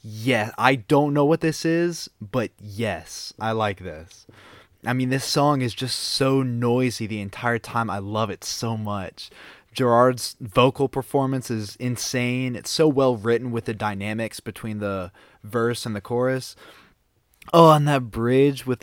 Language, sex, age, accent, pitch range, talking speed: English, male, 20-39, American, 105-135 Hz, 165 wpm